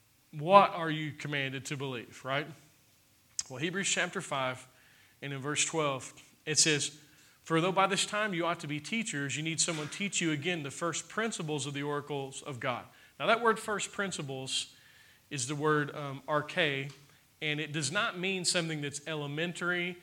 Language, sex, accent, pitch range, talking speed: English, male, American, 145-175 Hz, 180 wpm